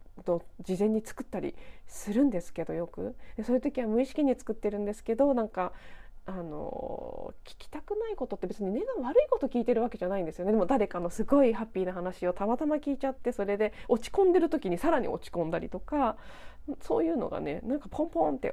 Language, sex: Japanese, female